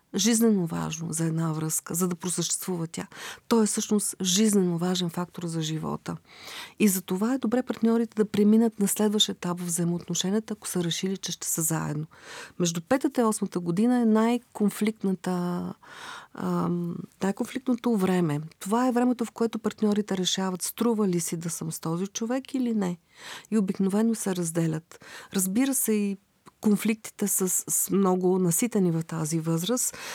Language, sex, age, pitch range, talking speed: Bulgarian, female, 40-59, 175-220 Hz, 155 wpm